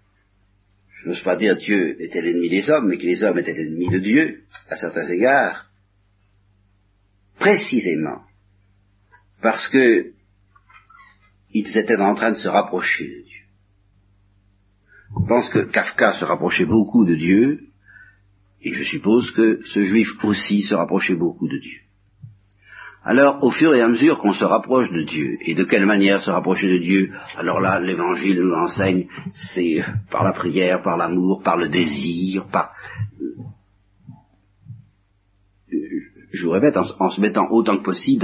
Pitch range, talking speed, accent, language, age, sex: 95-110 Hz, 150 wpm, French, French, 60-79, male